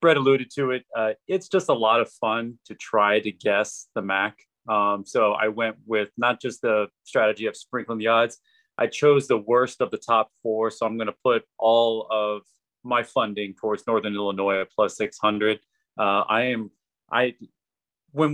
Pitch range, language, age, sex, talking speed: 105-125 Hz, English, 30-49, male, 185 wpm